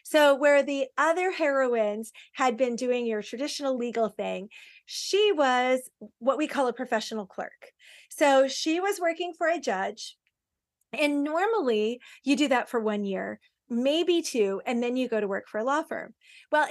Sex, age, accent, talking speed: female, 30-49, American, 170 wpm